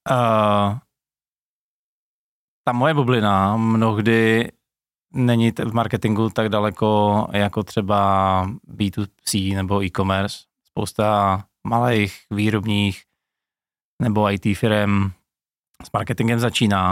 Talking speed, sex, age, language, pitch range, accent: 80 wpm, male, 20-39, Czech, 105-120 Hz, native